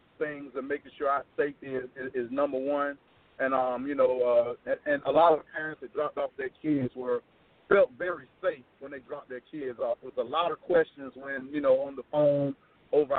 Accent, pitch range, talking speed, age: American, 135-160 Hz, 225 wpm, 40-59